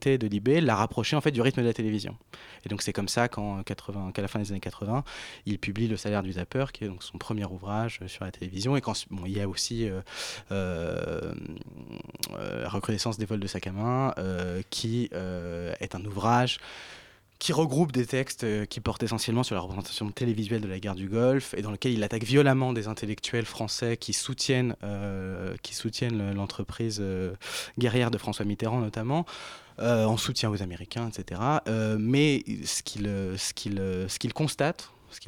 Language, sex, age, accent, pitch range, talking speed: French, male, 20-39, French, 105-130 Hz, 190 wpm